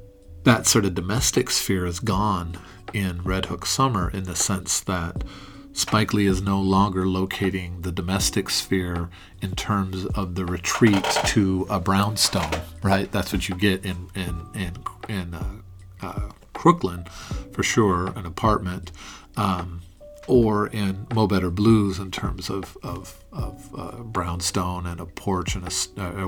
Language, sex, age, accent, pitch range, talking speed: English, male, 40-59, American, 90-105 Hz, 150 wpm